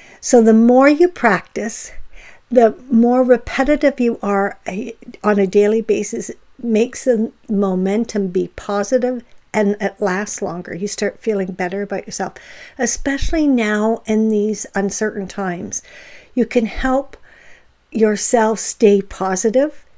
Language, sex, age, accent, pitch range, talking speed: English, female, 60-79, American, 205-250 Hz, 125 wpm